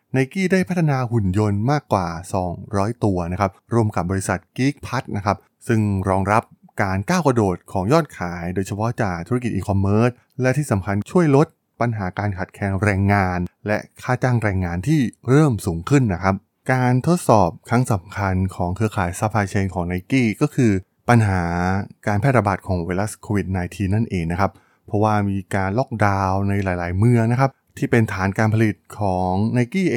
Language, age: Thai, 20-39